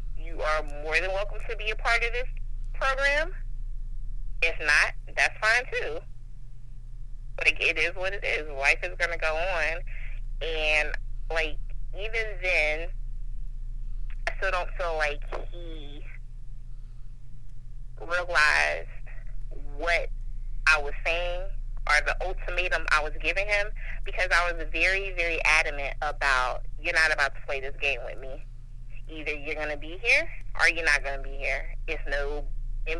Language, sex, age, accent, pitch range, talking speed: English, female, 20-39, American, 120-170 Hz, 145 wpm